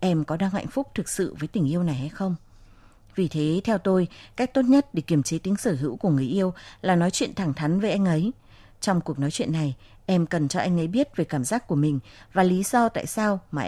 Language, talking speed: Vietnamese, 260 wpm